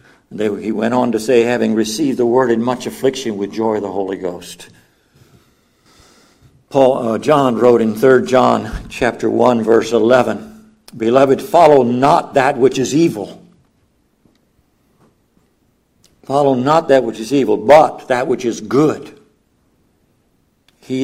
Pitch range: 110-140 Hz